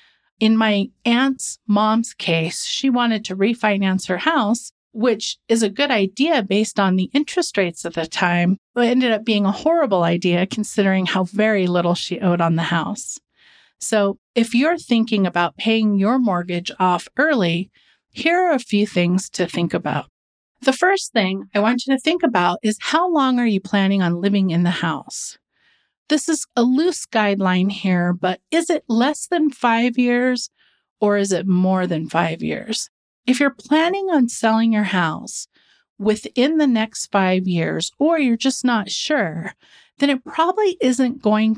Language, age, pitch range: English, 40-59, 185-255 Hz